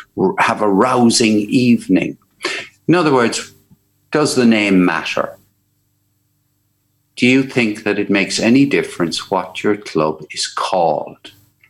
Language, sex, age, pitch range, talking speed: English, male, 60-79, 95-125 Hz, 125 wpm